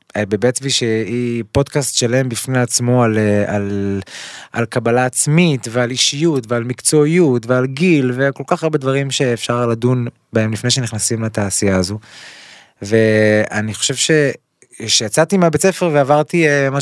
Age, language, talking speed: 20-39, Hebrew, 130 wpm